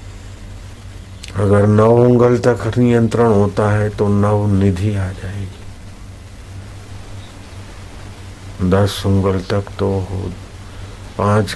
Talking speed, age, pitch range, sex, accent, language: 90 wpm, 50-69, 95-100 Hz, male, native, Hindi